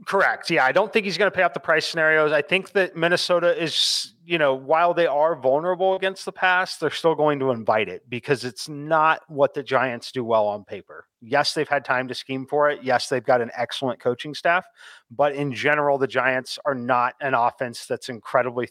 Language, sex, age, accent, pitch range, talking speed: English, male, 30-49, American, 125-160 Hz, 220 wpm